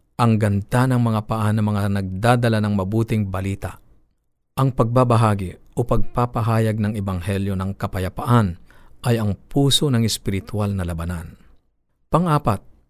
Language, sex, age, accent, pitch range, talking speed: Filipino, male, 50-69, native, 100-125 Hz, 130 wpm